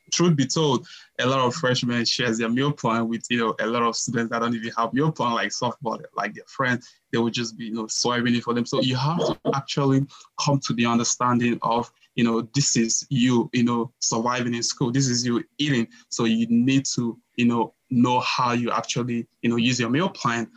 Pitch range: 115-130 Hz